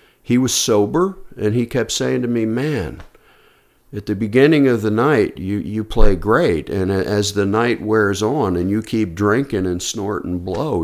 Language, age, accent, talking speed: English, 50-69, American, 190 wpm